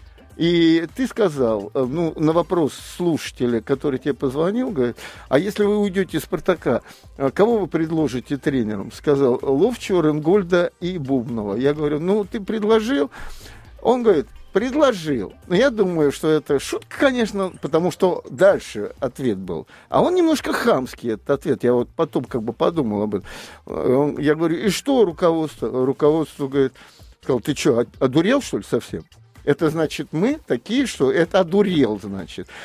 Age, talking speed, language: 50-69, 150 wpm, Russian